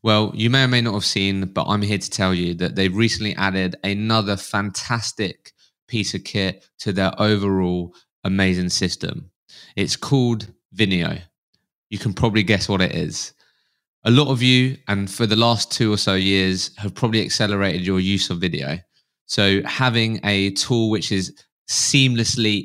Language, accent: English, British